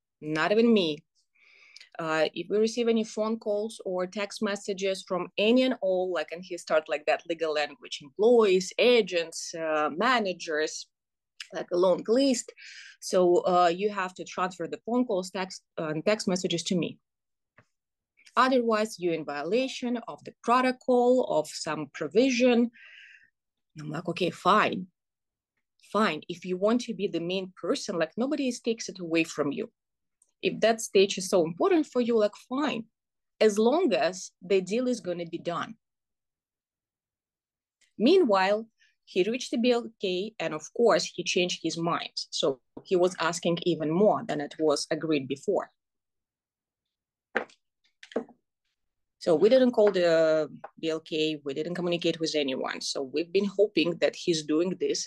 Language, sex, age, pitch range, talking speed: English, female, 20-39, 165-225 Hz, 155 wpm